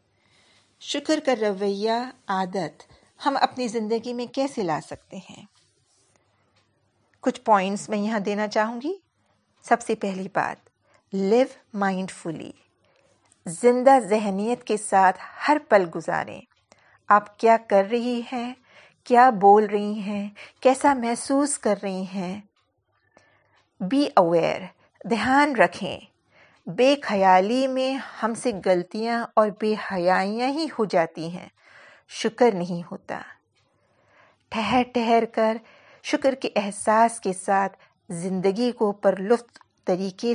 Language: Urdu